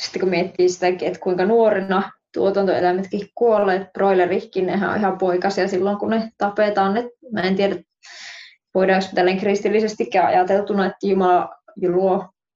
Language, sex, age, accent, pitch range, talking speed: Finnish, female, 20-39, native, 190-220 Hz, 140 wpm